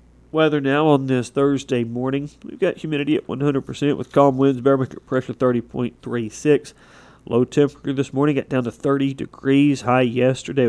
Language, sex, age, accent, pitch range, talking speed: English, male, 40-59, American, 115-140 Hz, 155 wpm